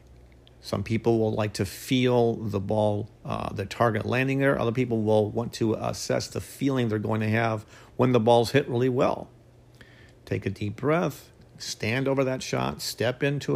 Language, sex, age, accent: English, male, 50-69, American